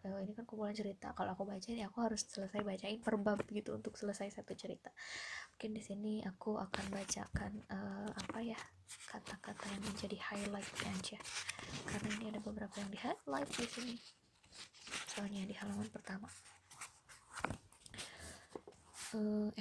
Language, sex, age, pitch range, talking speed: Indonesian, female, 20-39, 200-225 Hz, 145 wpm